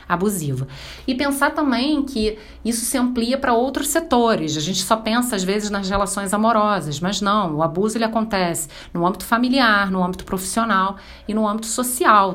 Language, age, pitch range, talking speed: Portuguese, 40-59, 170-225 Hz, 175 wpm